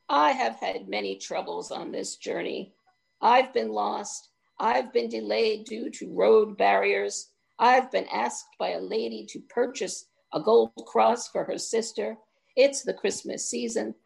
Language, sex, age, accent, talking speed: English, female, 50-69, American, 155 wpm